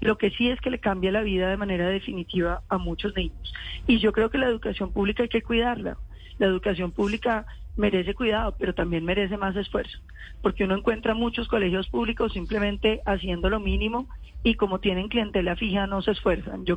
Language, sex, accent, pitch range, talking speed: Spanish, female, Colombian, 190-225 Hz, 195 wpm